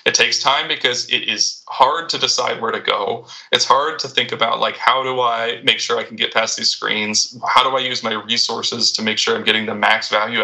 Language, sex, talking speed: English, male, 245 wpm